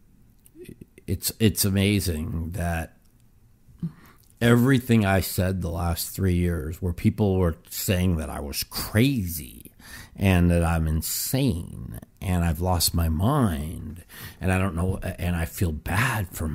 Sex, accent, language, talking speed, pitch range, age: male, American, English, 135 wpm, 85-110 Hz, 50-69